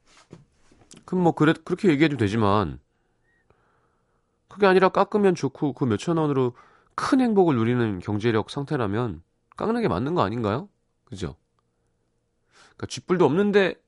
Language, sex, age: Korean, male, 30-49